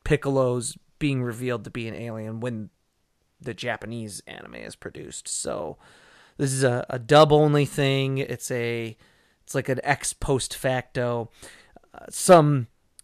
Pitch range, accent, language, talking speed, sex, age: 120-145 Hz, American, English, 145 wpm, male, 30-49